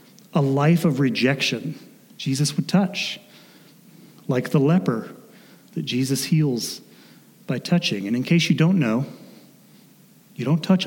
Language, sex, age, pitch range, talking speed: English, male, 30-49, 130-180 Hz, 135 wpm